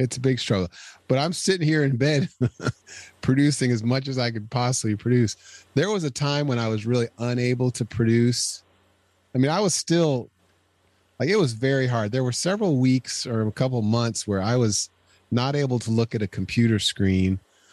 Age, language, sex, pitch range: 30-49, English, male, 95-120 Hz